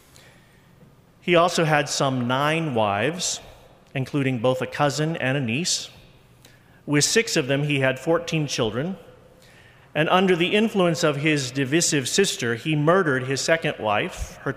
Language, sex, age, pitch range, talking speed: English, male, 40-59, 130-155 Hz, 145 wpm